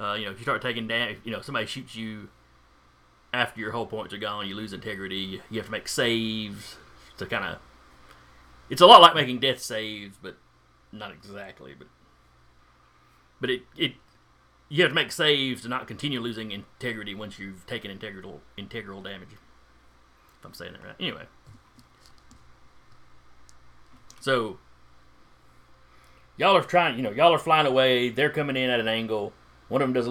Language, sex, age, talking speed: English, male, 30-49, 175 wpm